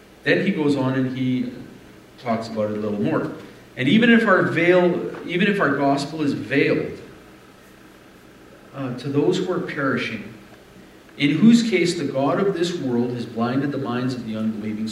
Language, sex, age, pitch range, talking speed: English, male, 50-69, 110-150 Hz, 175 wpm